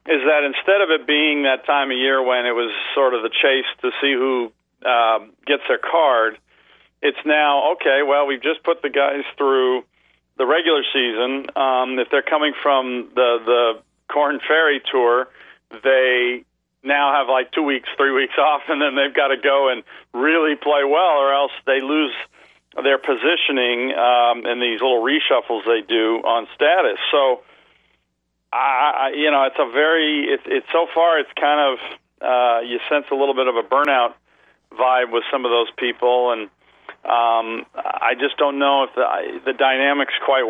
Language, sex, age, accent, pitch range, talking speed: English, male, 50-69, American, 120-145 Hz, 180 wpm